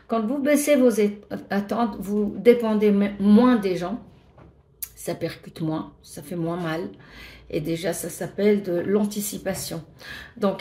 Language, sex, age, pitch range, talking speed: French, female, 50-69, 200-235 Hz, 135 wpm